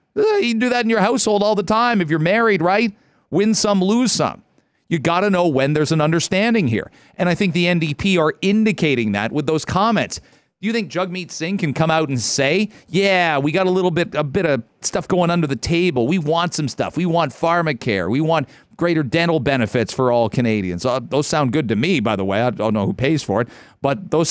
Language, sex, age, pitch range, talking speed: English, male, 40-59, 140-185 Hz, 230 wpm